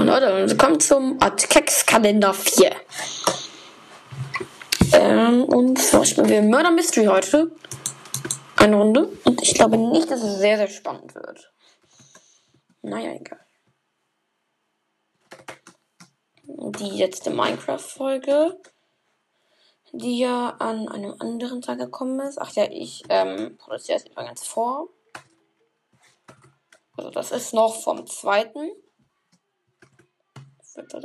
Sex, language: female, German